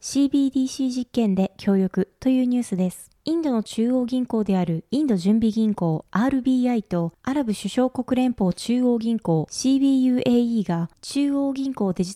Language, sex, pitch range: Japanese, female, 195-265 Hz